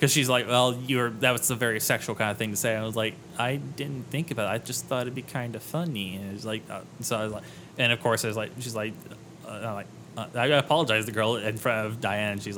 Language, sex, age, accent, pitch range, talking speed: English, male, 20-39, American, 110-130 Hz, 285 wpm